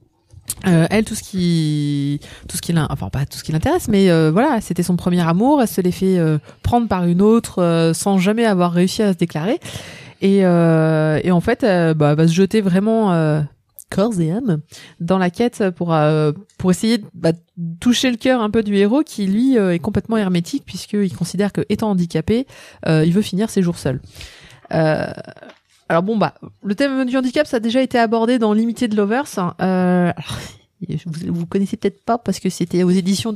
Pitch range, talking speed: 170-225 Hz, 215 wpm